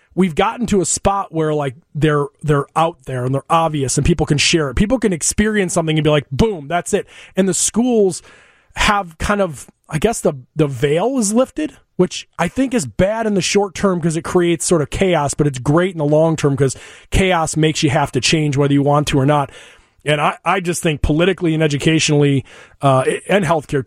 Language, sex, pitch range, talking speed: English, male, 145-180 Hz, 220 wpm